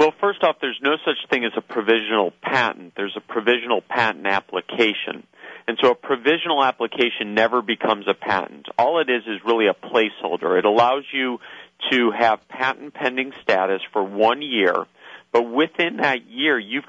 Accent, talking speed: American, 170 wpm